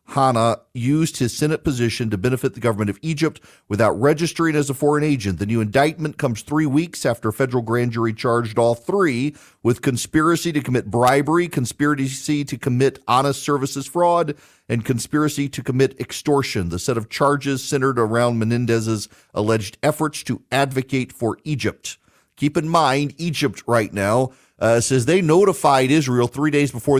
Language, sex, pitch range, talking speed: English, male, 110-140 Hz, 165 wpm